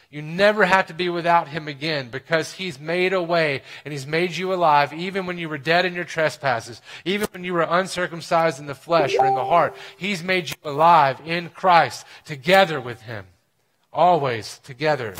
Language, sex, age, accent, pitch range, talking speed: English, male, 30-49, American, 130-170 Hz, 195 wpm